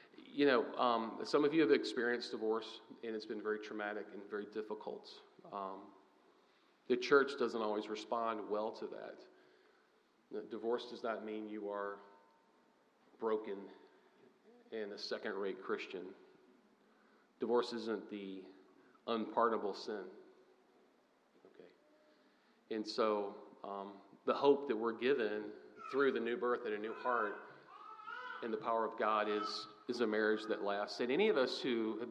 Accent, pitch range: American, 105-125 Hz